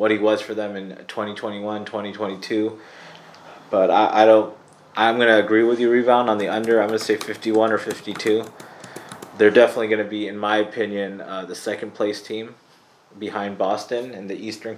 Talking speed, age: 185 wpm, 20-39